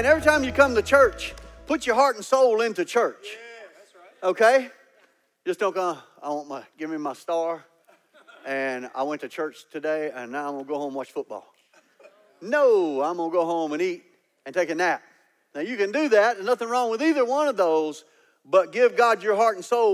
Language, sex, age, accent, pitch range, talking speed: English, male, 50-69, American, 190-270 Hz, 220 wpm